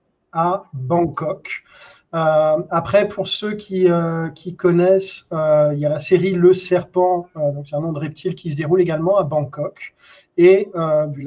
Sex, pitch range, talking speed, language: male, 145-185 Hz, 175 wpm, French